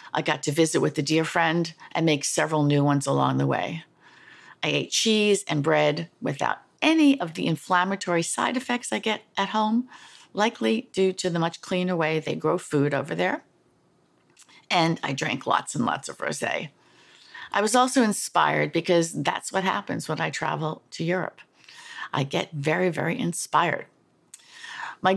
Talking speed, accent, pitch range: 170 wpm, American, 160-210 Hz